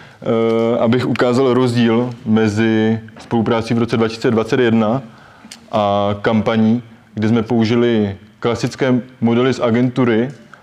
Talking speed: 100 wpm